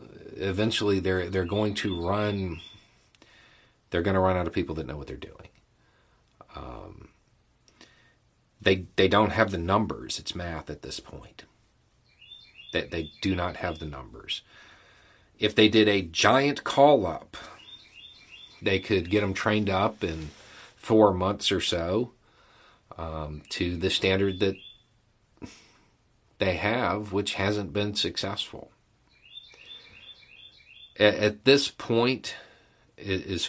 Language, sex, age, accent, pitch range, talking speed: English, male, 40-59, American, 90-110 Hz, 125 wpm